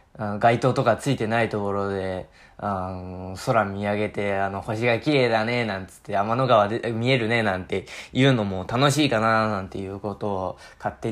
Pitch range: 100-135 Hz